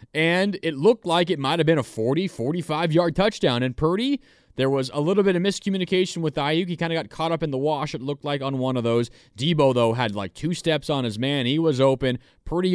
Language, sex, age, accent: English, male, 20-39, American